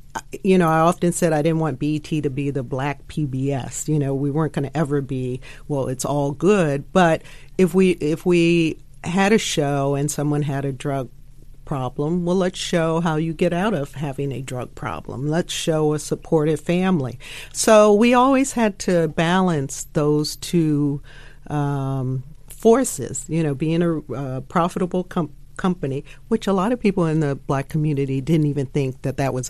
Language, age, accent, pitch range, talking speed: English, 50-69, American, 140-180 Hz, 185 wpm